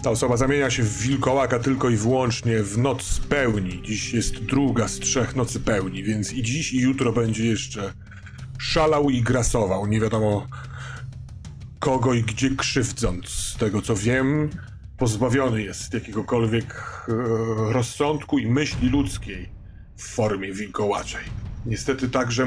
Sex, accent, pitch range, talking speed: male, native, 105-130 Hz, 135 wpm